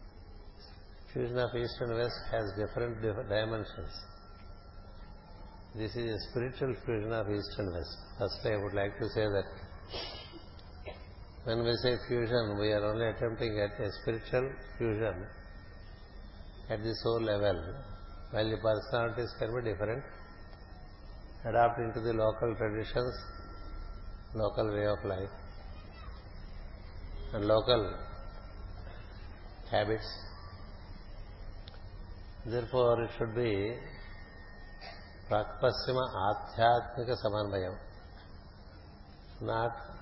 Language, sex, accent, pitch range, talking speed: Telugu, male, native, 95-115 Hz, 105 wpm